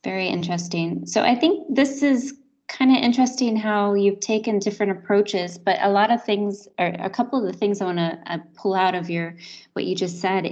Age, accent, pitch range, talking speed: 20-39, American, 180-225 Hz, 215 wpm